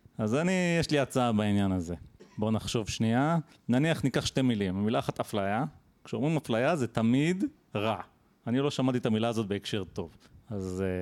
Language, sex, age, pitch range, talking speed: Hebrew, male, 30-49, 110-145 Hz, 170 wpm